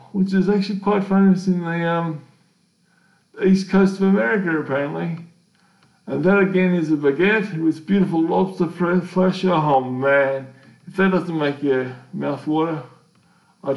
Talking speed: 145 wpm